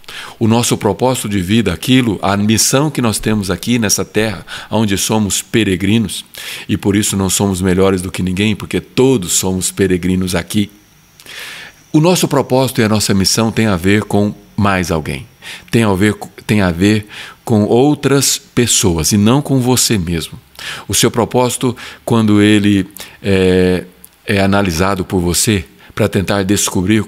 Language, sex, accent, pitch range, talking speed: Portuguese, male, Brazilian, 95-110 Hz, 155 wpm